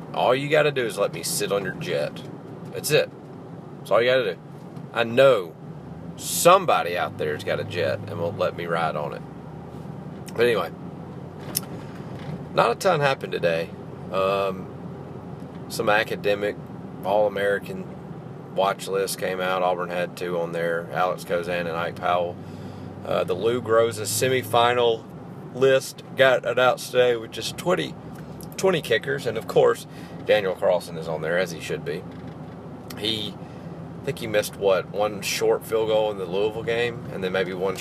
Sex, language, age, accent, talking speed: male, English, 40-59, American, 170 wpm